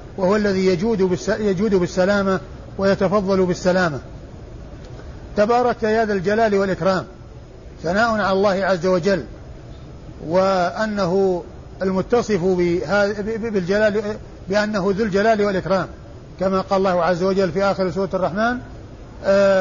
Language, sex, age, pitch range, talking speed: Arabic, male, 50-69, 185-210 Hz, 105 wpm